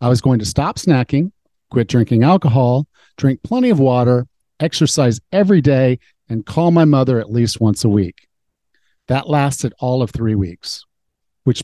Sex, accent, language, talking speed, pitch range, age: male, American, English, 165 wpm, 115-160 Hz, 50-69